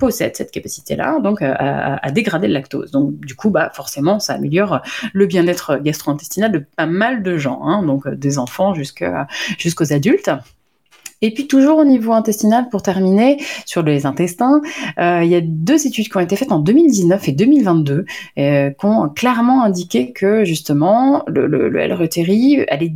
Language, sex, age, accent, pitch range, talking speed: French, female, 30-49, French, 150-215 Hz, 170 wpm